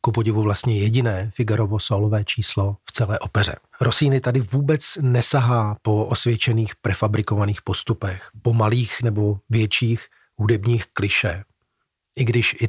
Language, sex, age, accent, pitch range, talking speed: Czech, male, 40-59, native, 105-120 Hz, 130 wpm